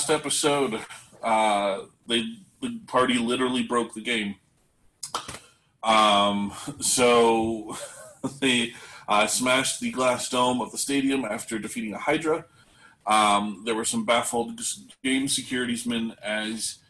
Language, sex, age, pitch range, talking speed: English, male, 30-49, 105-130 Hz, 120 wpm